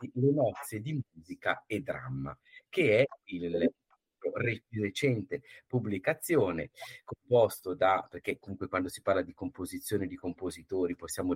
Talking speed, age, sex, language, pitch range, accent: 120 wpm, 50-69, male, Italian, 95-125 Hz, native